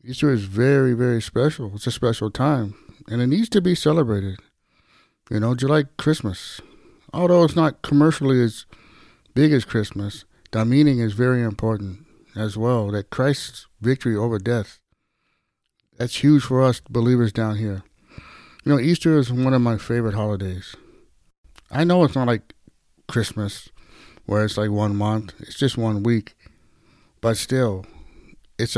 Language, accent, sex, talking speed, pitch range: English, American, male, 155 wpm, 110-135 Hz